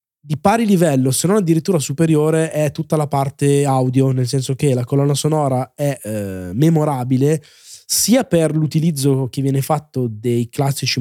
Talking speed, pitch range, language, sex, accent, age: 160 wpm, 120-150 Hz, Italian, male, native, 20-39